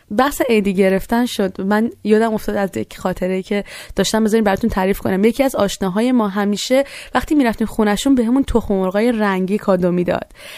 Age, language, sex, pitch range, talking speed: 20-39, Persian, female, 195-240 Hz, 175 wpm